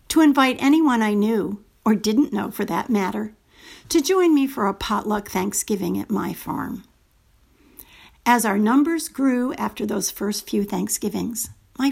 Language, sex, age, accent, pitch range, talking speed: English, female, 50-69, American, 205-270 Hz, 155 wpm